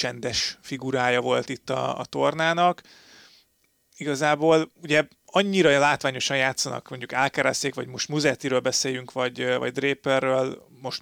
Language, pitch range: Hungarian, 130-150 Hz